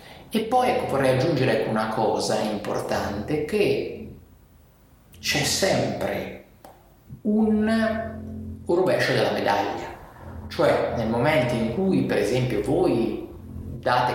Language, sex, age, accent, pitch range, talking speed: Italian, male, 30-49, native, 100-140 Hz, 100 wpm